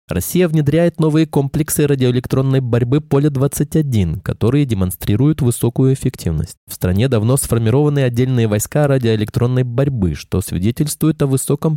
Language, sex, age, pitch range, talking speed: Russian, male, 20-39, 110-150 Hz, 115 wpm